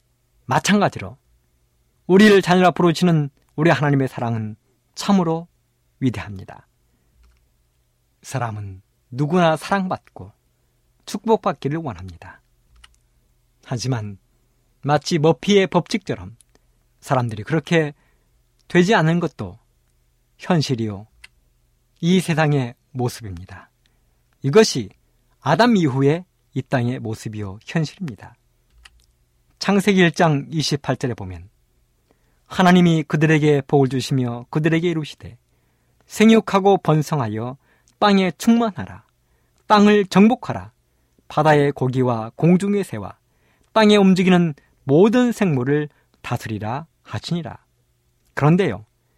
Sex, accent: male, native